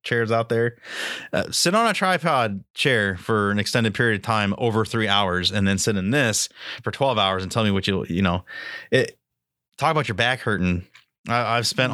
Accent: American